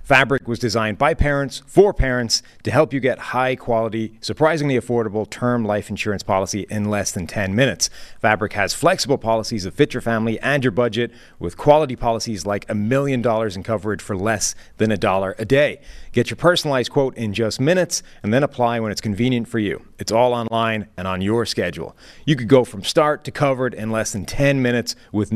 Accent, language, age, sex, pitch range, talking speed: American, English, 30-49, male, 105-130 Hz, 200 wpm